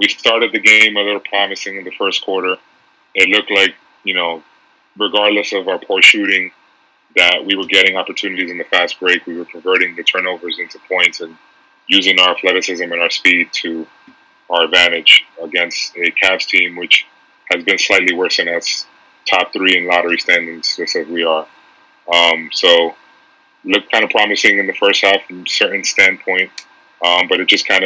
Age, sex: 30-49, male